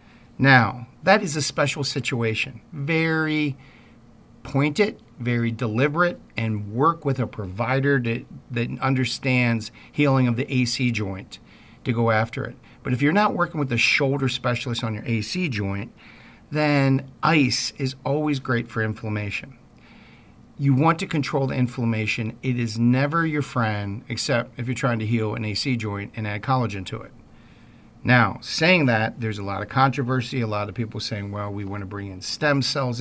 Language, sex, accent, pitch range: English, male, American, 110-130 Hz